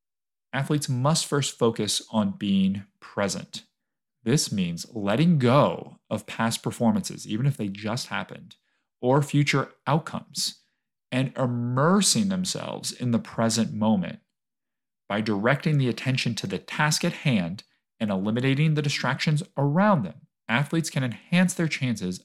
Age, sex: 40-59, male